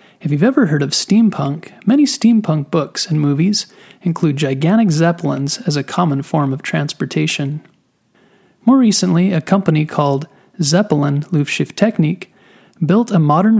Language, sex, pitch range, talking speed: English, male, 150-205 Hz, 135 wpm